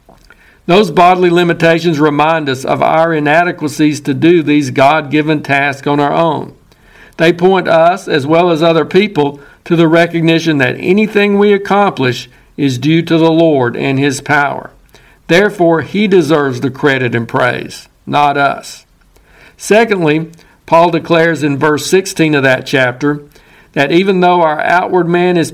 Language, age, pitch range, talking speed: English, 60-79, 140-170 Hz, 150 wpm